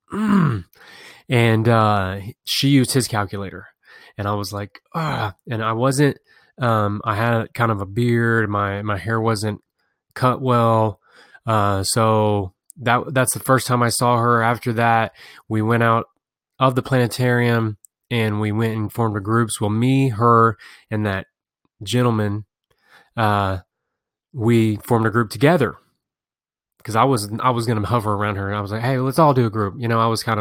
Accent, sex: American, male